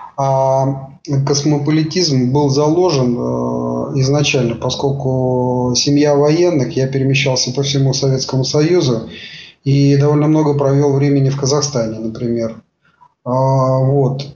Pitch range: 125-145 Hz